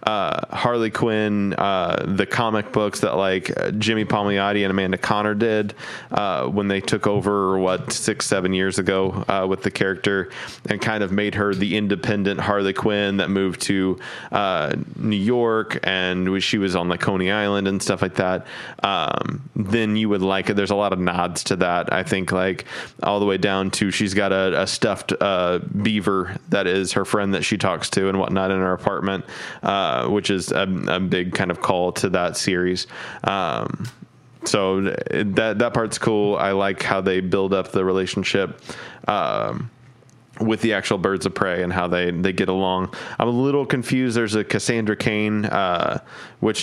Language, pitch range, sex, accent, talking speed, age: English, 95-105 Hz, male, American, 185 wpm, 20-39